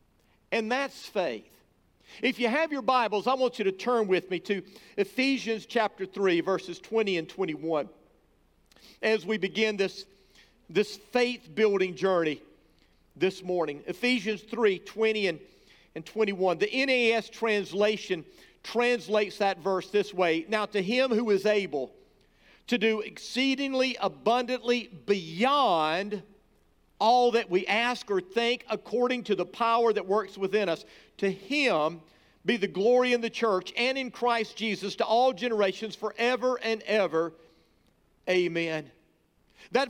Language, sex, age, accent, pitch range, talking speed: English, male, 50-69, American, 190-245 Hz, 140 wpm